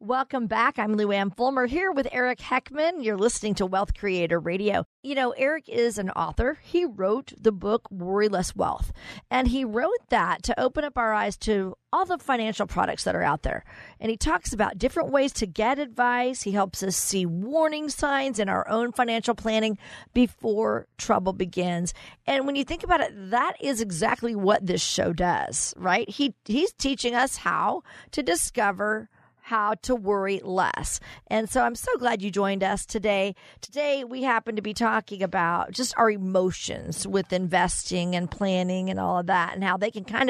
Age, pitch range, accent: 50-69, 200-255 Hz, American